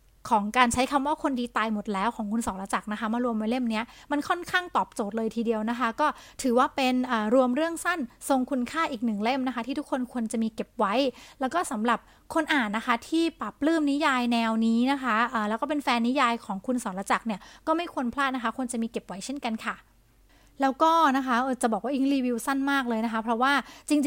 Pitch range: 235-295 Hz